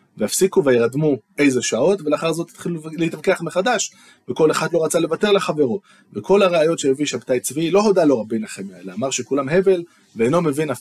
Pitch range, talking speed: 120-180 Hz, 170 wpm